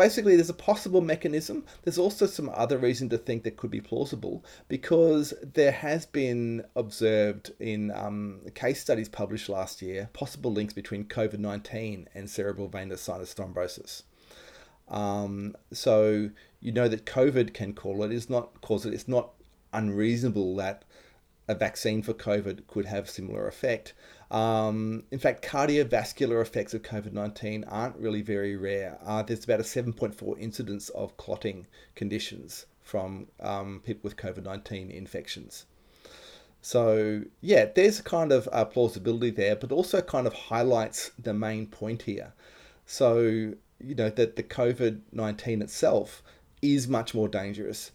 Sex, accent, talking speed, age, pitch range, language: male, Australian, 140 wpm, 30-49, 105-120 Hz, English